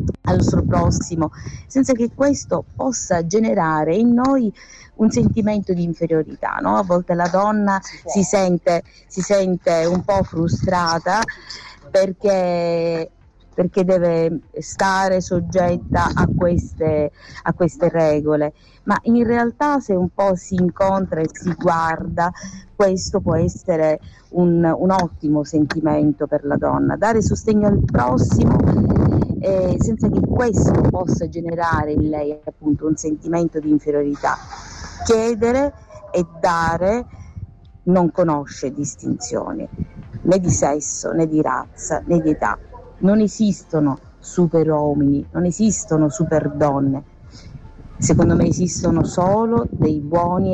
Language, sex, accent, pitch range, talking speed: Italian, female, native, 150-190 Hz, 120 wpm